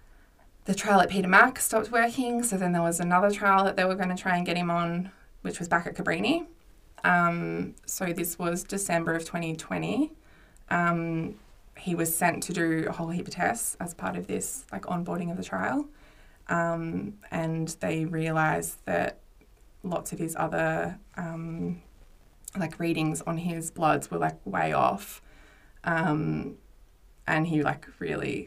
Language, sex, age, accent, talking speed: English, female, 20-39, Australian, 165 wpm